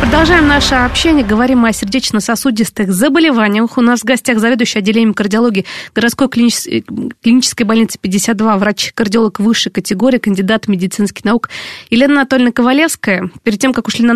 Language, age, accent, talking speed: Russian, 20-39, native, 135 wpm